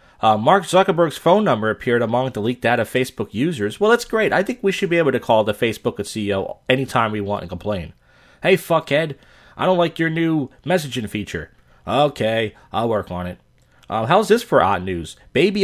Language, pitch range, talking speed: English, 110-185 Hz, 205 wpm